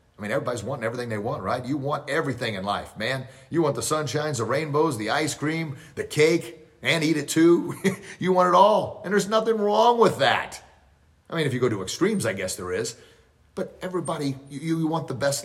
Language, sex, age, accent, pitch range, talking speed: English, male, 30-49, American, 110-155 Hz, 220 wpm